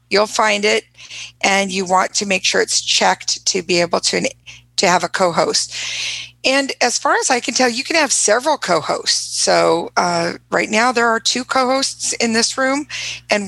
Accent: American